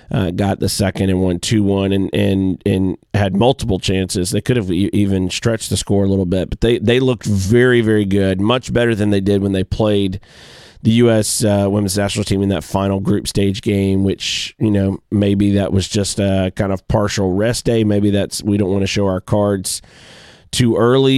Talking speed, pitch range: 215 wpm, 95-110 Hz